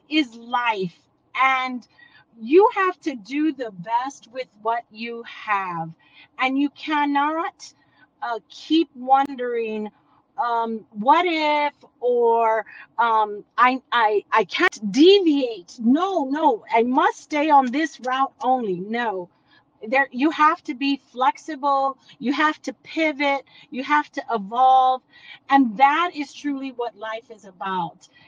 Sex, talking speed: female, 130 wpm